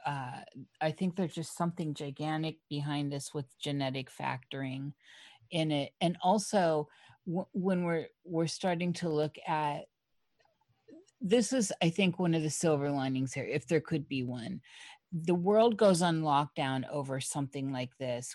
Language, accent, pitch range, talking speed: English, American, 140-175 Hz, 150 wpm